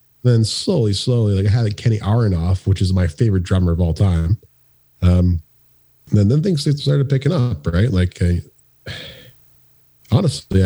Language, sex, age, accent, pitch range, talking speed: English, male, 30-49, American, 85-105 Hz, 165 wpm